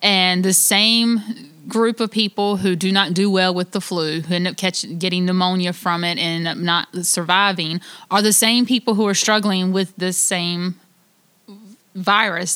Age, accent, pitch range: 20-39, American, 190-230 Hz